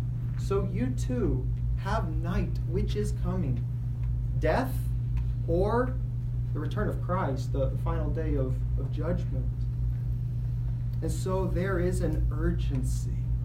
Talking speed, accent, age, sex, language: 115 wpm, American, 30-49, male, English